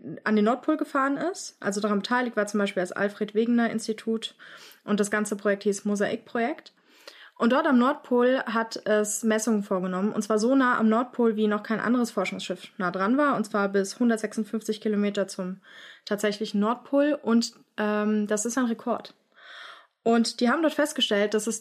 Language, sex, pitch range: German, female, 200-235 Hz